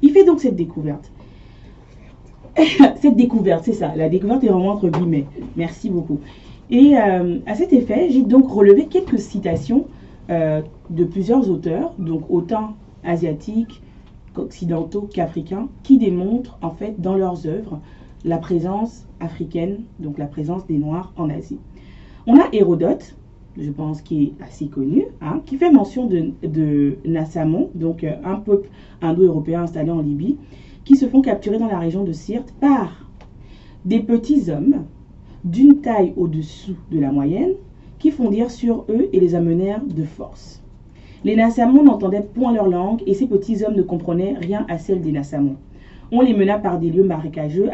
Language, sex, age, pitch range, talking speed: French, female, 30-49, 160-225 Hz, 160 wpm